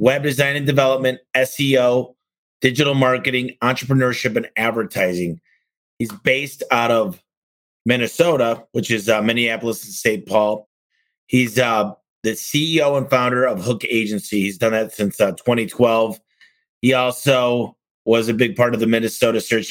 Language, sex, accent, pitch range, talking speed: English, male, American, 110-130 Hz, 145 wpm